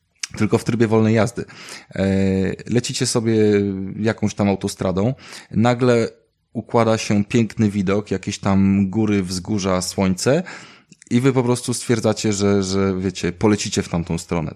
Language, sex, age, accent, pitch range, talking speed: Polish, male, 20-39, native, 90-110 Hz, 130 wpm